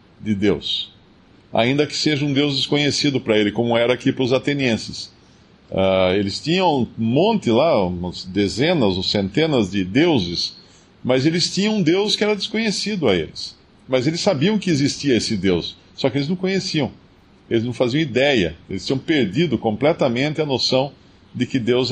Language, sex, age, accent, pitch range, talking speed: Portuguese, male, 50-69, Brazilian, 105-155 Hz, 170 wpm